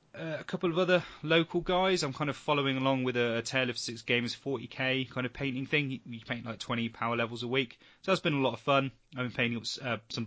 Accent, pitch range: British, 115-145 Hz